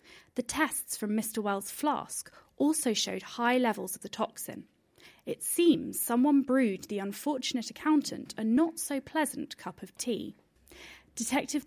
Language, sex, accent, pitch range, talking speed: English, female, British, 210-290 Hz, 135 wpm